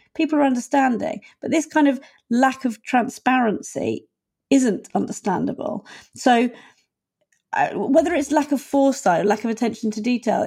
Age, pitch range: 40-59, 215-275 Hz